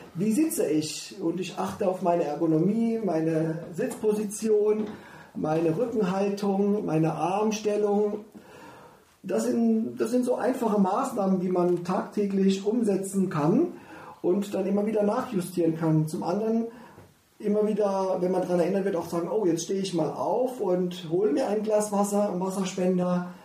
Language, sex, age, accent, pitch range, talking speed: German, male, 40-59, German, 165-205 Hz, 145 wpm